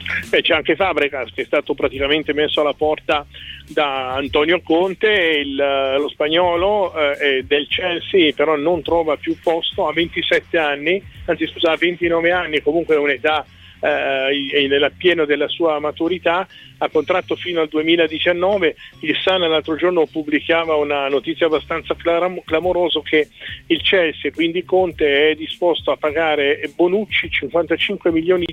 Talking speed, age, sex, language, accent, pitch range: 150 wpm, 40-59, male, Italian, native, 150-175 Hz